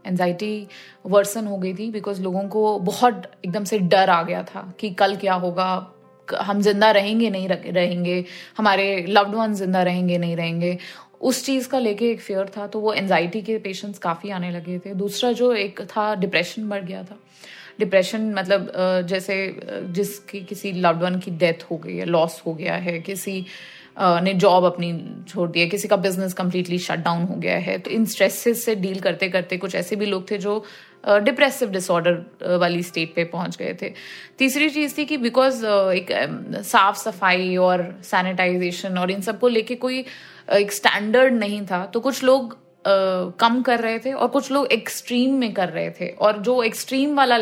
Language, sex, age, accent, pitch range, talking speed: Hindi, female, 20-39, native, 185-220 Hz, 195 wpm